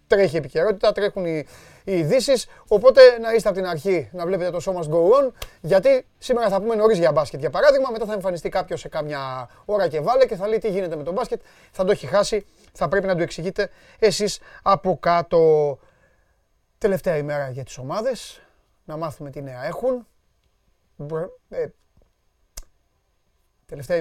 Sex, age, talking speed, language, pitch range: male, 30-49, 175 wpm, Greek, 140-195 Hz